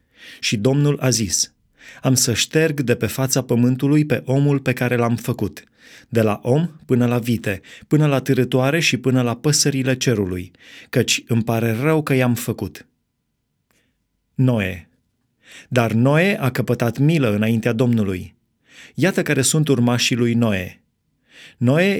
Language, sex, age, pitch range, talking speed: Romanian, male, 30-49, 115-145 Hz, 145 wpm